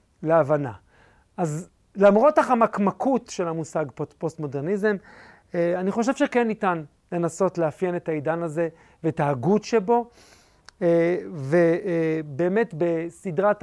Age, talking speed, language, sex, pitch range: 40-59, 90 wpm, Hebrew, male, 165-215 Hz